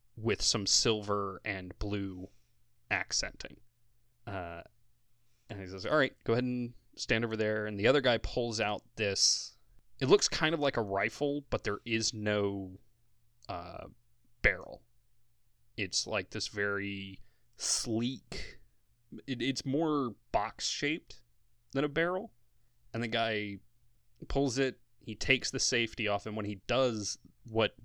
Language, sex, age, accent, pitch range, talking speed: English, male, 20-39, American, 100-120 Hz, 140 wpm